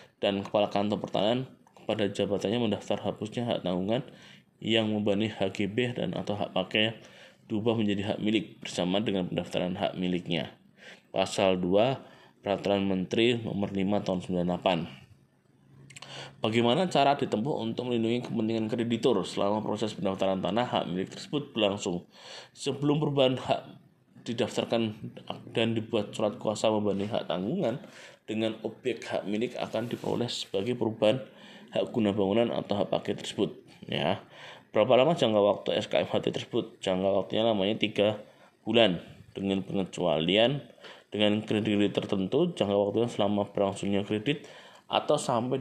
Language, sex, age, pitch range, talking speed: Indonesian, male, 20-39, 100-115 Hz, 130 wpm